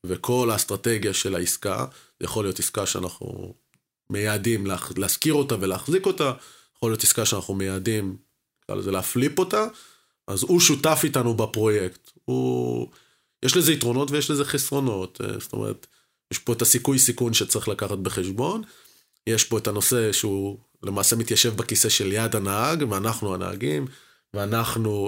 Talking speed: 140 wpm